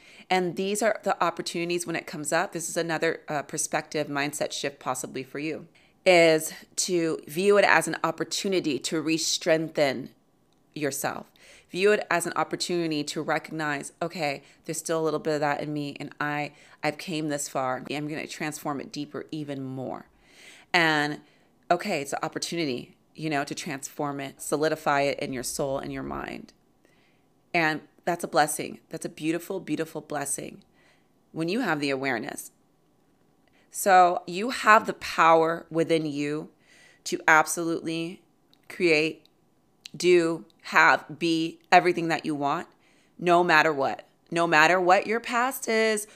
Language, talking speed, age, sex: English, 155 wpm, 30-49, female